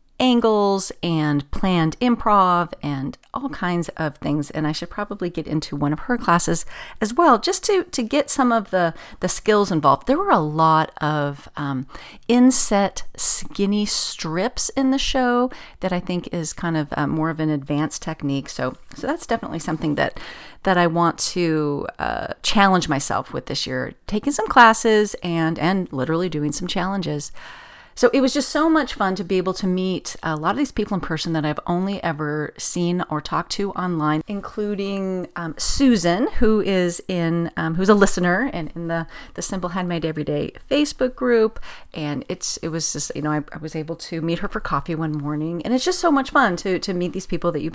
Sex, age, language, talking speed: female, 40-59, English, 200 wpm